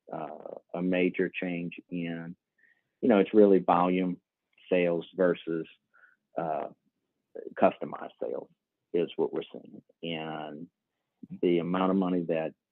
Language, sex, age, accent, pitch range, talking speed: English, male, 50-69, American, 85-100 Hz, 120 wpm